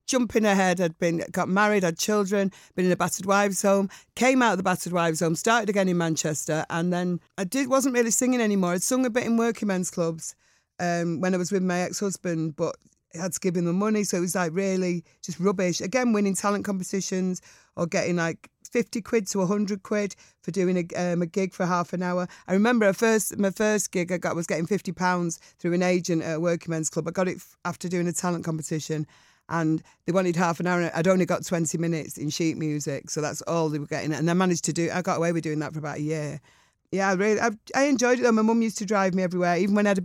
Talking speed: 255 wpm